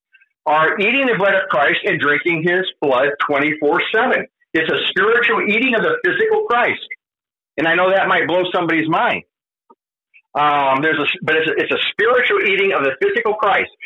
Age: 50-69